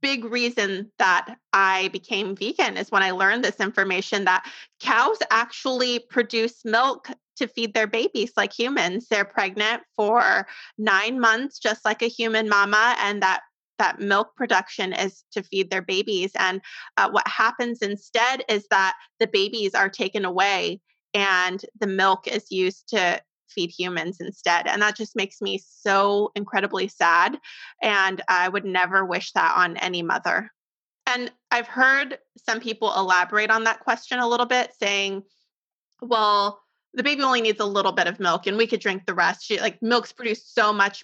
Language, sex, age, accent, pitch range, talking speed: English, female, 20-39, American, 195-235 Hz, 170 wpm